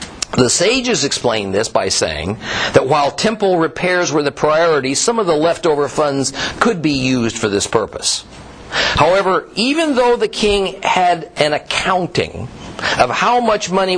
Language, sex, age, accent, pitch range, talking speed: English, male, 50-69, American, 135-220 Hz, 155 wpm